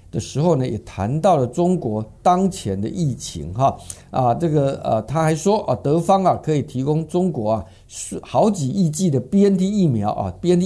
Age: 50-69